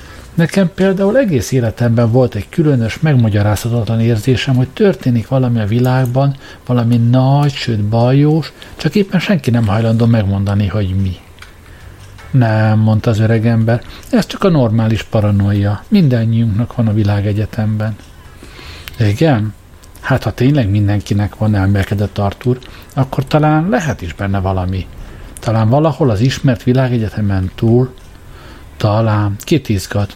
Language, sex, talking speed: Hungarian, male, 120 wpm